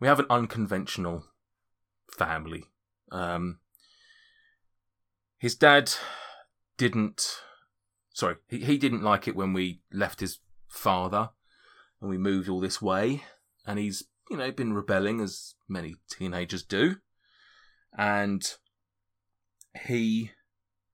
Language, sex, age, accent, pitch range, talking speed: English, male, 30-49, British, 95-110 Hz, 110 wpm